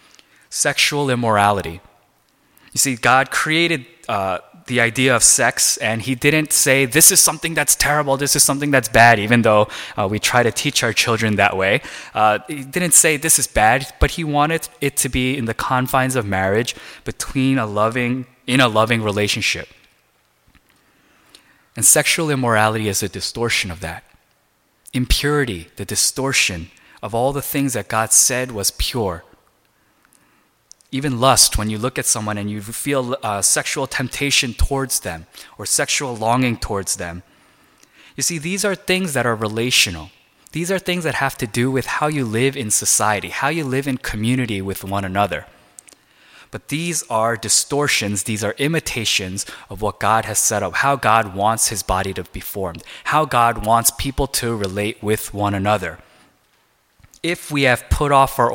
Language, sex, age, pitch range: Korean, male, 20-39, 105-140 Hz